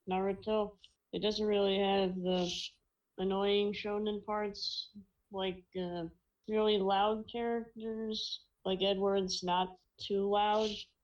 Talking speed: 105 wpm